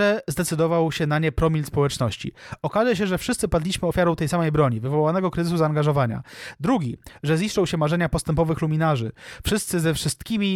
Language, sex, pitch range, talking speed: Polish, male, 145-180 Hz, 165 wpm